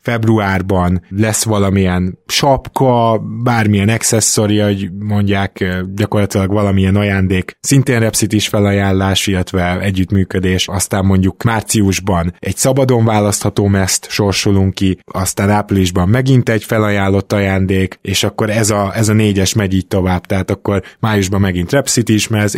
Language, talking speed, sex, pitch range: Hungarian, 130 wpm, male, 95-115 Hz